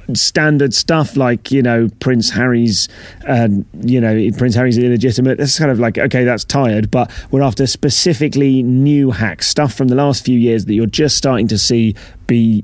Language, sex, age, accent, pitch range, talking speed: English, male, 30-49, British, 115-145 Hz, 185 wpm